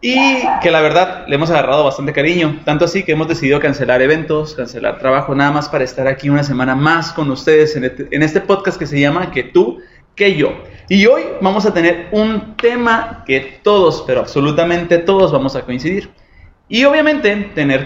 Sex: male